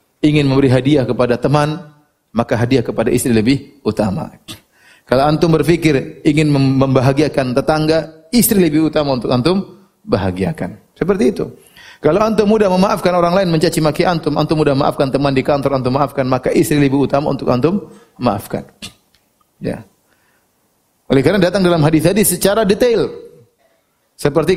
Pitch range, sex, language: 145-195 Hz, male, Indonesian